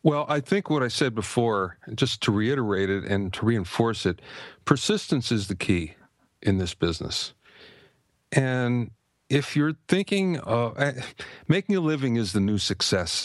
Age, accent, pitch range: 50-69, American, 95-135 Hz